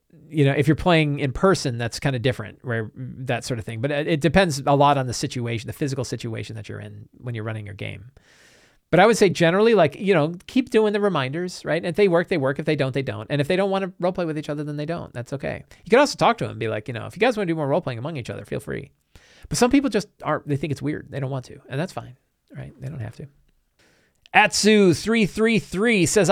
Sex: male